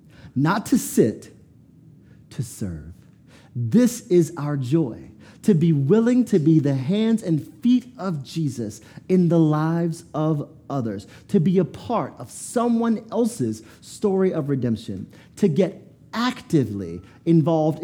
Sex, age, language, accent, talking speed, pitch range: male, 40-59, English, American, 130 wpm, 110-165 Hz